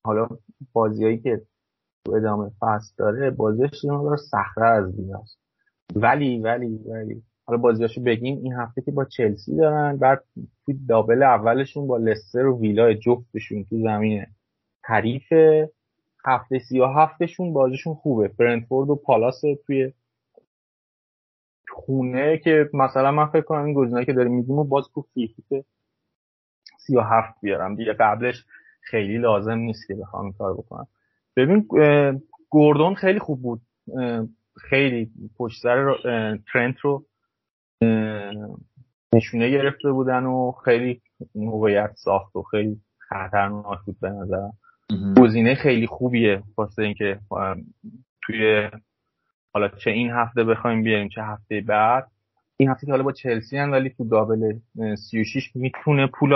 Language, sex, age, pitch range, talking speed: Persian, male, 30-49, 110-135 Hz, 130 wpm